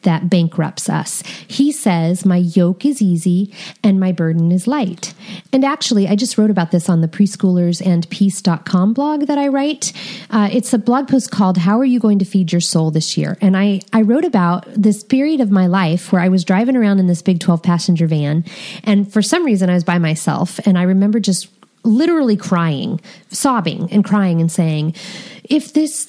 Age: 30-49